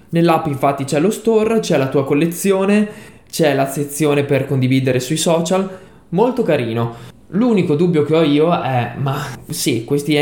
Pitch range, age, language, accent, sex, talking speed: 125-150 Hz, 20-39, Italian, native, male, 160 wpm